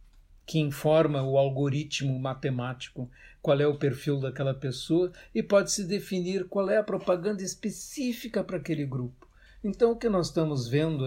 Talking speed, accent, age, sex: 155 wpm, Brazilian, 60-79, male